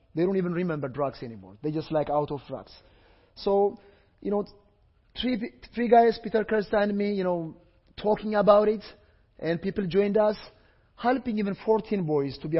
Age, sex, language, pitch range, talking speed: 30-49, male, English, 140-200 Hz, 175 wpm